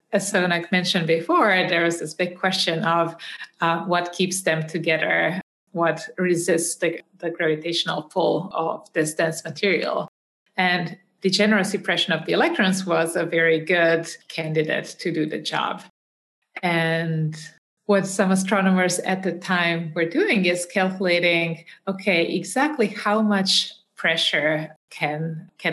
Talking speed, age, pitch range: 135 wpm, 30-49, 165-200 Hz